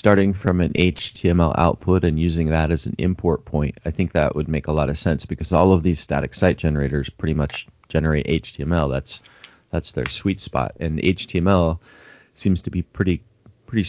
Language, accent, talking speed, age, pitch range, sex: English, American, 190 wpm, 30-49, 80-100 Hz, male